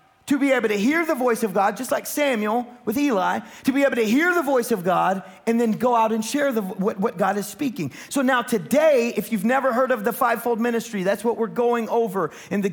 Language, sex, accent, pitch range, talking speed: English, male, American, 160-230 Hz, 245 wpm